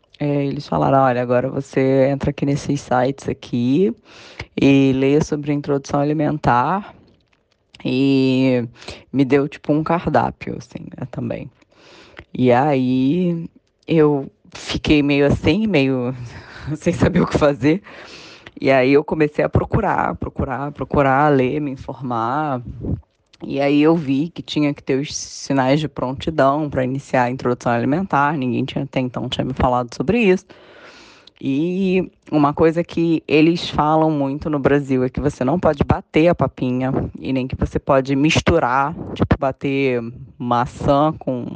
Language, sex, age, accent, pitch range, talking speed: Portuguese, female, 20-39, Brazilian, 130-155 Hz, 145 wpm